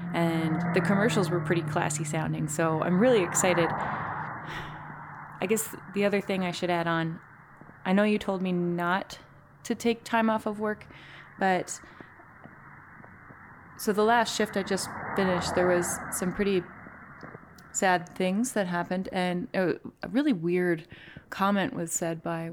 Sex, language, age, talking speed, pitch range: female, English, 20-39, 150 wpm, 175-210 Hz